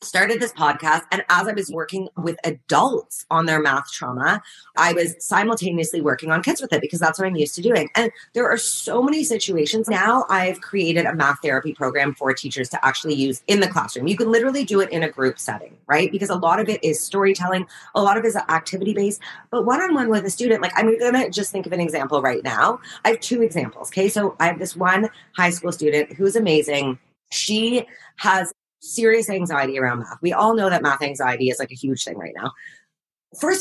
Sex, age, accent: female, 30-49, American